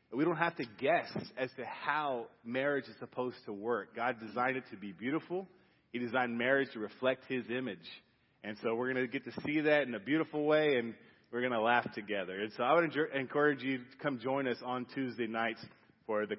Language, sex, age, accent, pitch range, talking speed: English, male, 30-49, American, 130-175 Hz, 220 wpm